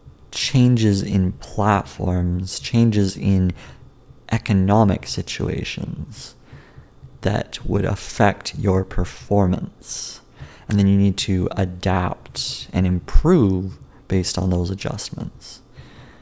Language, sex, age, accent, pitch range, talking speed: English, male, 30-49, American, 90-105 Hz, 90 wpm